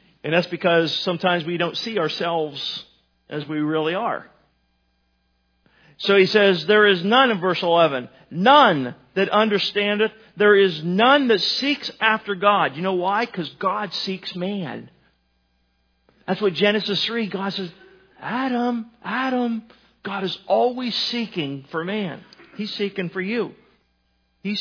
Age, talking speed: 40-59, 140 wpm